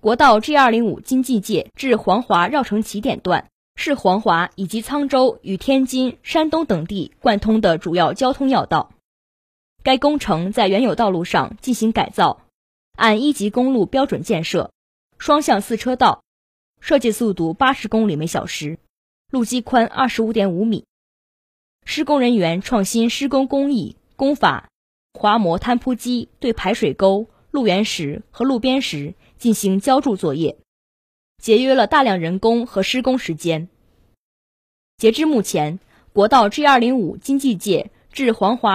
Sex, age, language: female, 20-39, Chinese